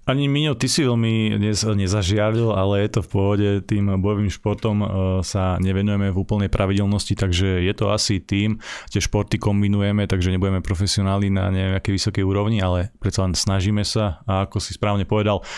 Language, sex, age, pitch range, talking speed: Slovak, male, 30-49, 95-105 Hz, 170 wpm